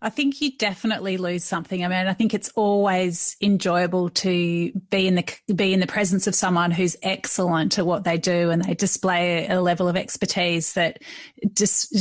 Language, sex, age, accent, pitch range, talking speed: English, female, 30-49, Australian, 175-215 Hz, 190 wpm